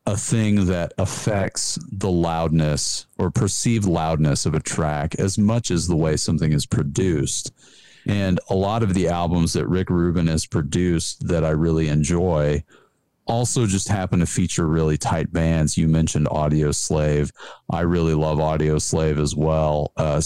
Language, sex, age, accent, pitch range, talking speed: English, male, 40-59, American, 75-90 Hz, 165 wpm